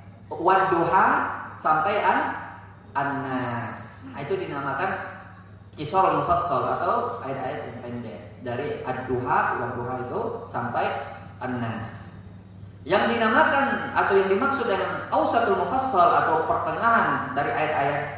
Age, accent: 30-49, native